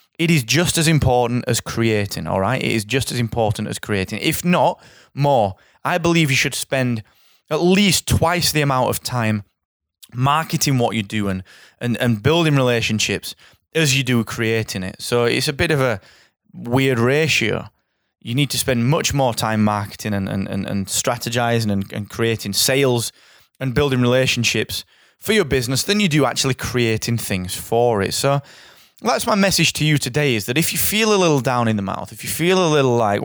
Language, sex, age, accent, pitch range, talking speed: English, male, 20-39, British, 110-145 Hz, 195 wpm